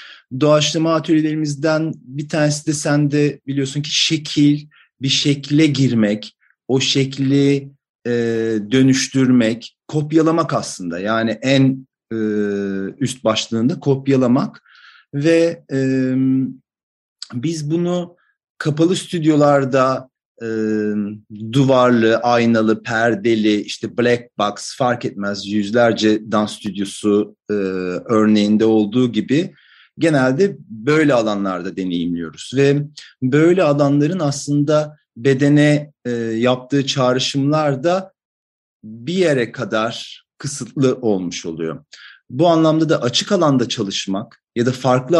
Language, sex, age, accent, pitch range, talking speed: Turkish, male, 40-59, native, 115-150 Hz, 100 wpm